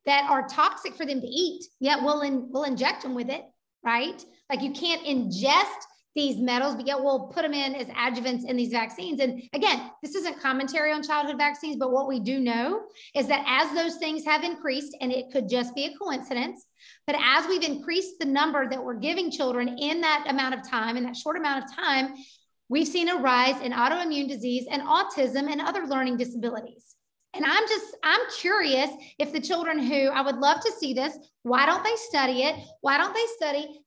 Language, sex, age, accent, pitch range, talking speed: English, female, 40-59, American, 270-345 Hz, 205 wpm